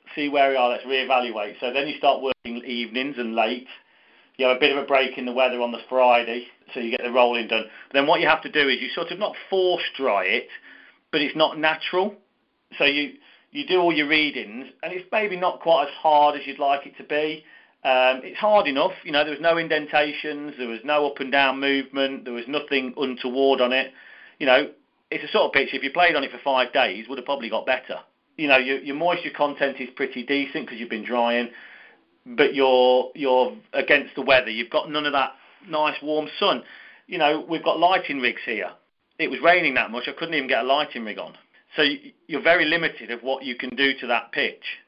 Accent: British